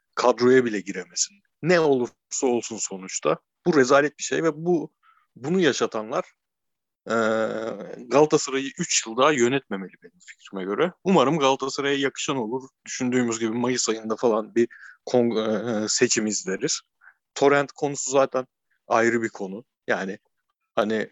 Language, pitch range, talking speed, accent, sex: Turkish, 110-135 Hz, 130 wpm, native, male